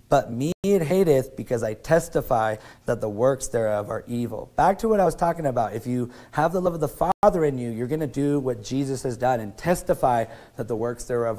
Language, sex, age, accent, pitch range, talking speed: English, male, 30-49, American, 120-155 Hz, 230 wpm